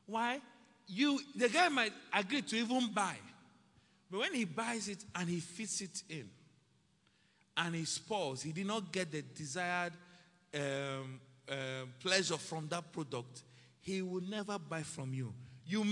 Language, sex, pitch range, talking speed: English, male, 135-190 Hz, 155 wpm